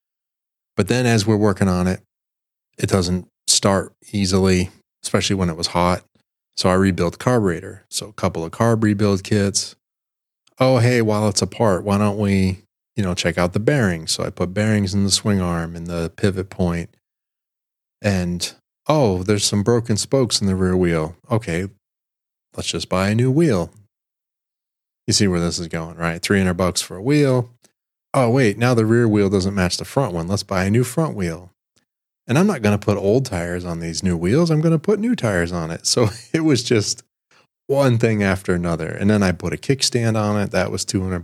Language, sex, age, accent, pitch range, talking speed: English, male, 30-49, American, 90-115 Hz, 205 wpm